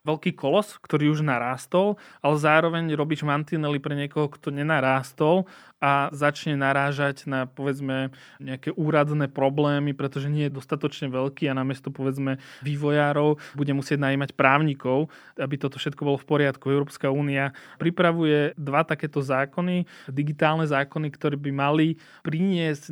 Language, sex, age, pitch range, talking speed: Slovak, male, 20-39, 140-155 Hz, 135 wpm